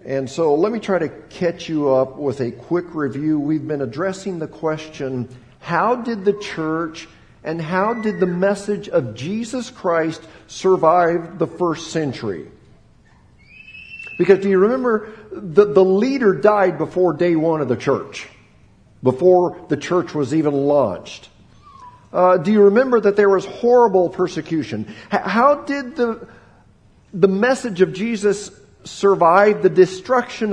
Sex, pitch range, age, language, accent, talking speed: male, 155-205 Hz, 50-69, English, American, 145 wpm